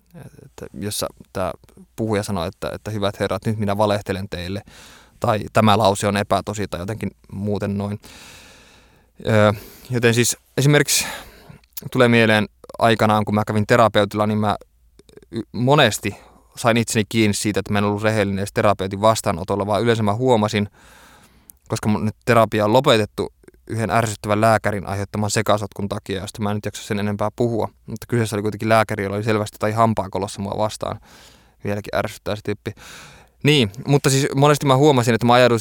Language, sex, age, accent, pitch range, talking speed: Finnish, male, 20-39, native, 105-115 Hz, 160 wpm